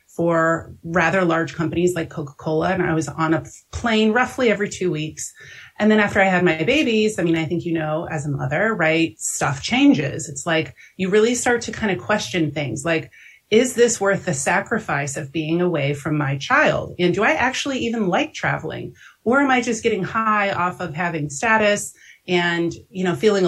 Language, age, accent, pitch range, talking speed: English, 30-49, American, 160-210 Hz, 200 wpm